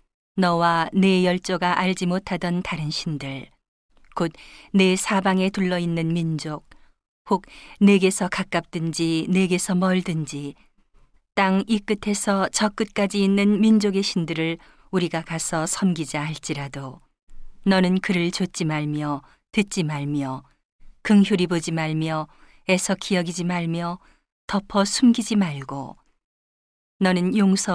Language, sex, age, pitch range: Korean, female, 40-59, 165-195 Hz